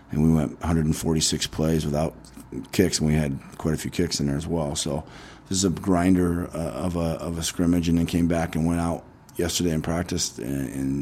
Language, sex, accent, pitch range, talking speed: English, male, American, 75-90 Hz, 220 wpm